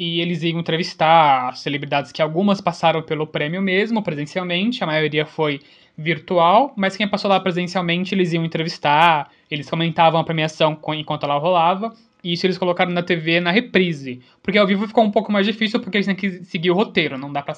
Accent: Brazilian